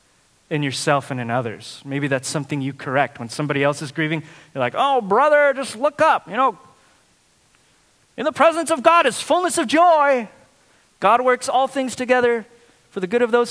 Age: 30-49